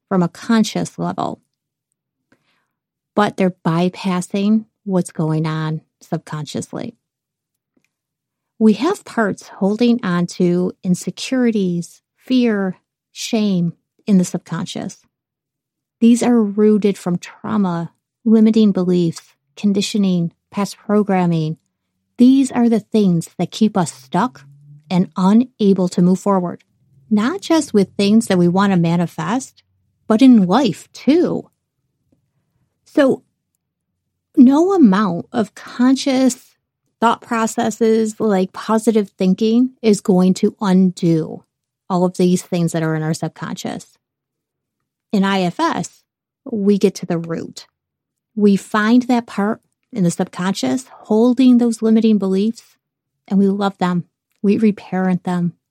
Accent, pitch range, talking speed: American, 175-225 Hz, 115 wpm